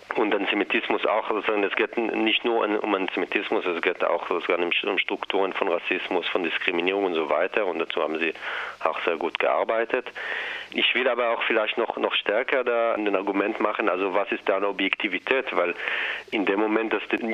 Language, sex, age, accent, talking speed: German, male, 40-59, German, 195 wpm